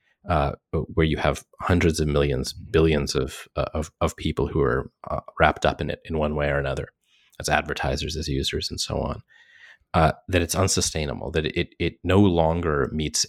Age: 30-49